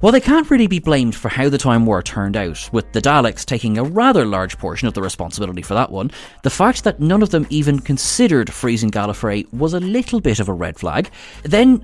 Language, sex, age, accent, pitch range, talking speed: English, male, 30-49, Irish, 105-160 Hz, 235 wpm